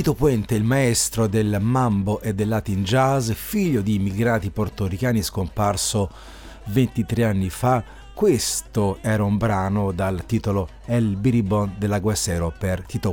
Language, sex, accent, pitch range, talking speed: Italian, male, native, 100-125 Hz, 135 wpm